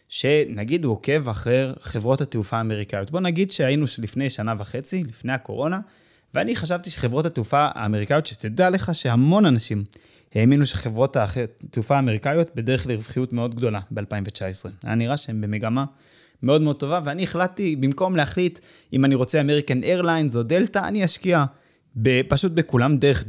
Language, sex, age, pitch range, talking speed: Hebrew, male, 20-39, 120-160 Hz, 145 wpm